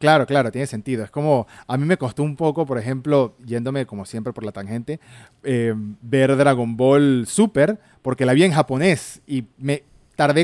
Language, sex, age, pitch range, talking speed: Spanish, male, 30-49, 120-155 Hz, 190 wpm